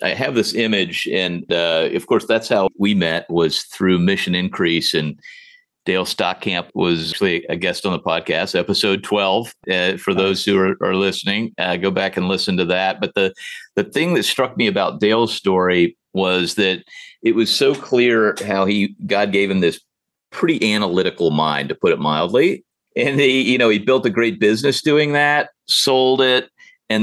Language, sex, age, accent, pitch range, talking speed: English, male, 50-69, American, 95-125 Hz, 190 wpm